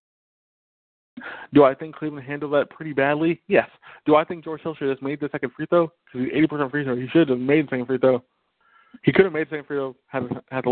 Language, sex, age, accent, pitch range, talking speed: English, male, 20-39, American, 125-165 Hz, 245 wpm